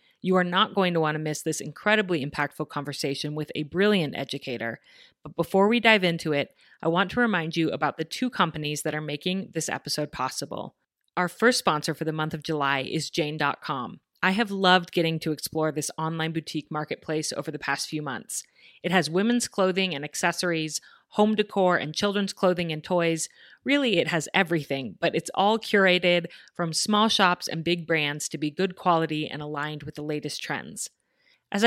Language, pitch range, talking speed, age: English, 155-190 Hz, 190 wpm, 30-49